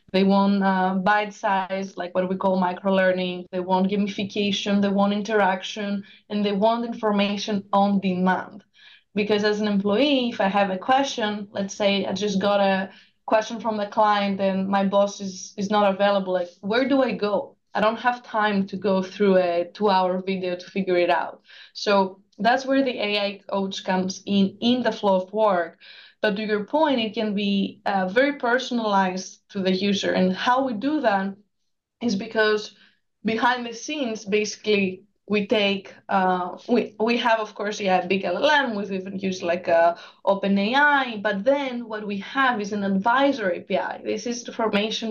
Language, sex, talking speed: English, female, 175 wpm